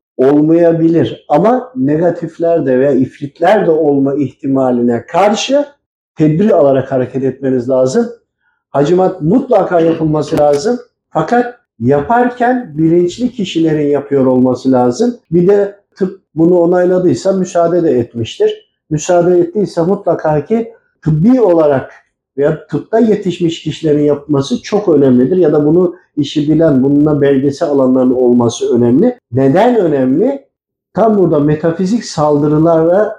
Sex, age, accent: male, 50-69, native